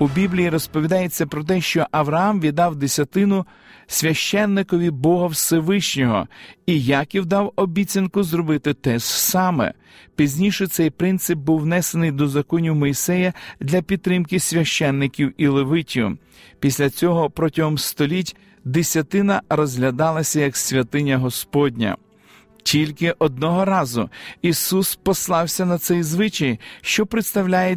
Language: Ukrainian